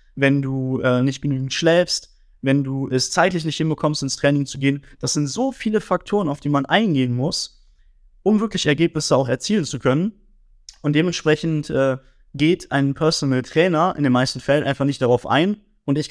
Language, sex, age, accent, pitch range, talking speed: German, male, 20-39, German, 135-170 Hz, 185 wpm